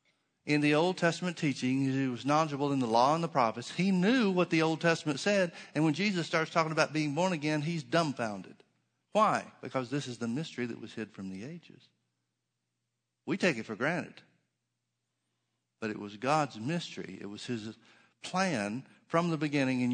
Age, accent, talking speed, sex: 60-79, American, 185 wpm, male